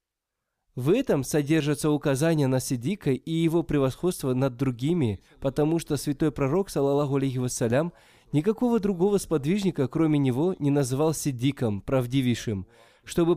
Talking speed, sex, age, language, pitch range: 125 wpm, male, 20-39, Russian, 130-170 Hz